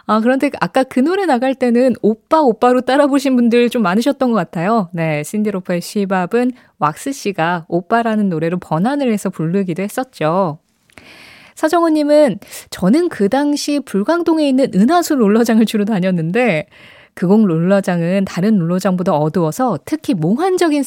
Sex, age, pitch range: female, 20-39, 180-260 Hz